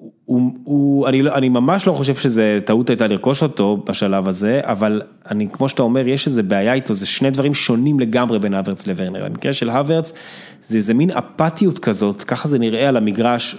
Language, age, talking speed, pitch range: Hebrew, 20-39, 200 wpm, 110-150 Hz